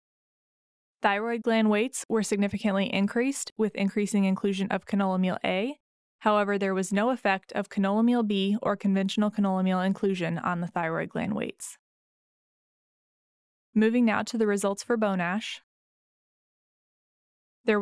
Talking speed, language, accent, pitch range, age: 130 wpm, English, American, 195-220 Hz, 20-39